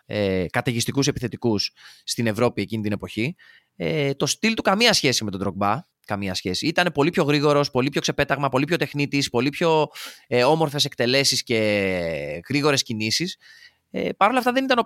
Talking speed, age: 160 wpm, 20-39